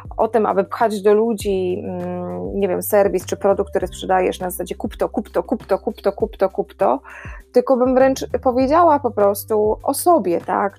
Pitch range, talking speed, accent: 195-245 Hz, 200 wpm, native